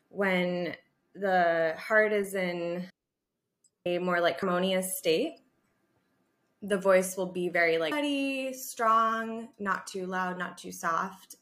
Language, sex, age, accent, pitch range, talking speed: English, female, 20-39, American, 170-195 Hz, 125 wpm